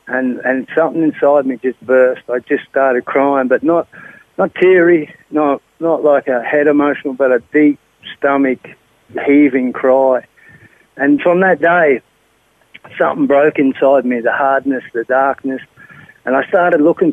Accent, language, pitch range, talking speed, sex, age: Australian, English, 130-160 Hz, 150 wpm, male, 50-69